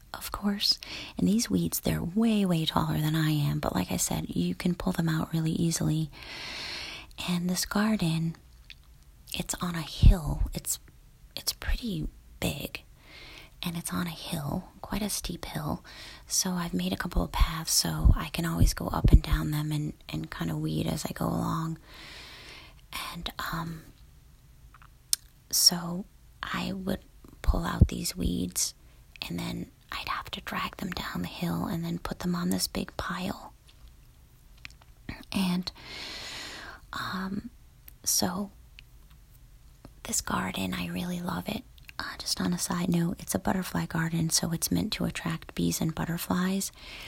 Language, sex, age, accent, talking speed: English, female, 30-49, American, 155 wpm